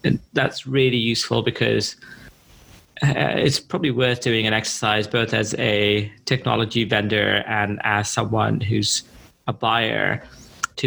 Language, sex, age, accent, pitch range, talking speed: English, male, 30-49, British, 110-130 Hz, 135 wpm